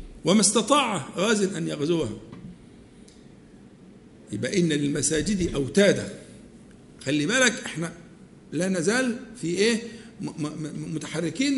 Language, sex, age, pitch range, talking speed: Arabic, male, 50-69, 165-230 Hz, 90 wpm